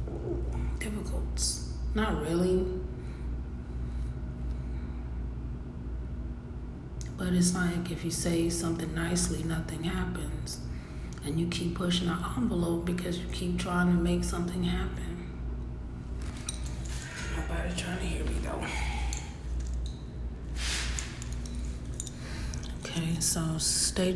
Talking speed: 85 wpm